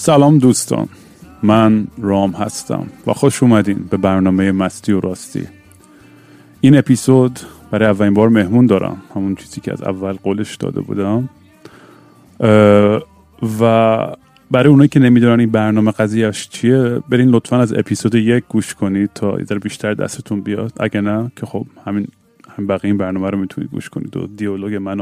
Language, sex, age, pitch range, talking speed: Persian, male, 30-49, 105-125 Hz, 155 wpm